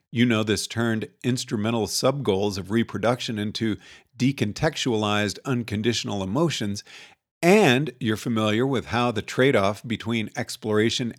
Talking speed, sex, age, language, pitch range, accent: 115 wpm, male, 50-69, English, 105-130 Hz, American